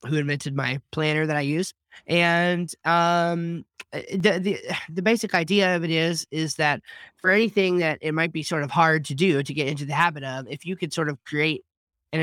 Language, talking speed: English, 210 wpm